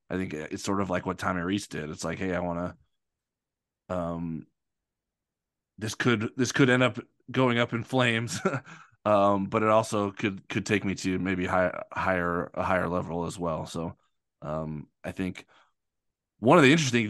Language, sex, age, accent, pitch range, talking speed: English, male, 20-39, American, 95-120 Hz, 185 wpm